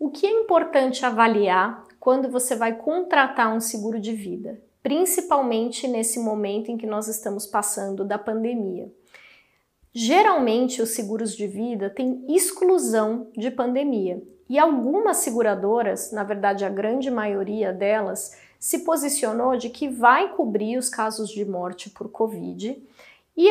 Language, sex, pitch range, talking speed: Portuguese, female, 215-275 Hz, 140 wpm